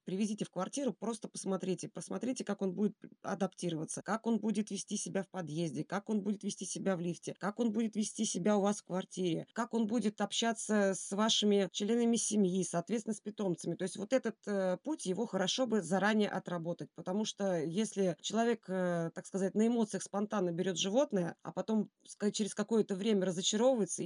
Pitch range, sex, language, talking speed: 185-215 Hz, female, Russian, 180 wpm